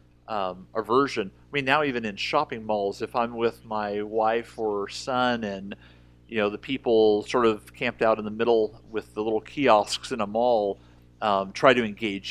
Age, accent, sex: 40-59, American, male